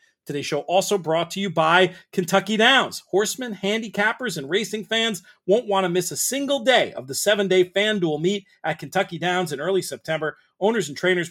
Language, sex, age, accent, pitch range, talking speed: English, male, 40-59, American, 160-215 Hz, 190 wpm